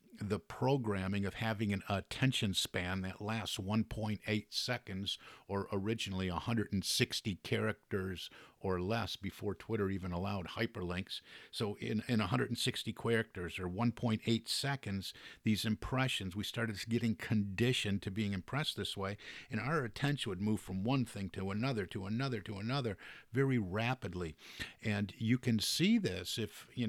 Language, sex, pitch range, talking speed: English, male, 95-120 Hz, 145 wpm